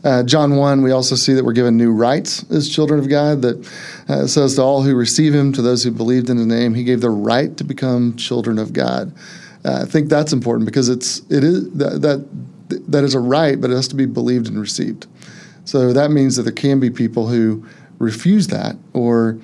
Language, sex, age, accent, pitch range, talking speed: English, male, 30-49, American, 120-140 Hz, 230 wpm